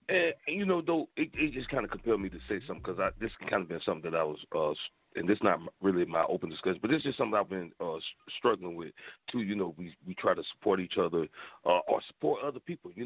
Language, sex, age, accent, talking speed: English, male, 40-59, American, 260 wpm